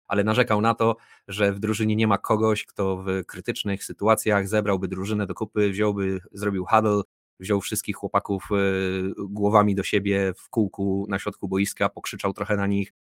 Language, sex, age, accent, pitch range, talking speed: Polish, male, 20-39, native, 100-110 Hz, 165 wpm